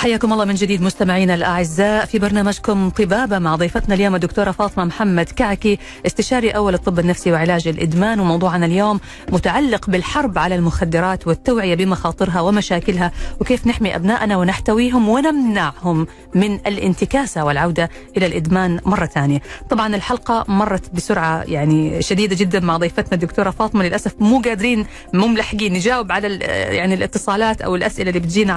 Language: Arabic